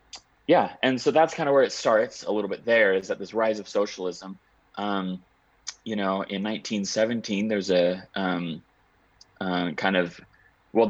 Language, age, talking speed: English, 30-49, 170 wpm